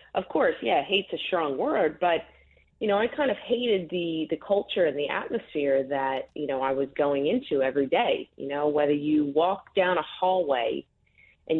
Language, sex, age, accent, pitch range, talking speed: English, female, 40-59, American, 145-190 Hz, 195 wpm